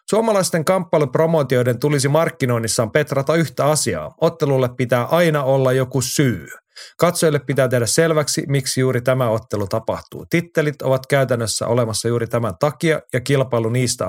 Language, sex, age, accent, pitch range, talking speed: Finnish, male, 30-49, native, 115-140 Hz, 135 wpm